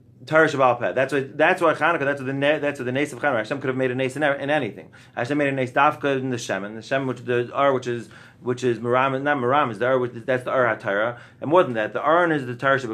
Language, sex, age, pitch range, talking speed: English, male, 30-49, 125-155 Hz, 290 wpm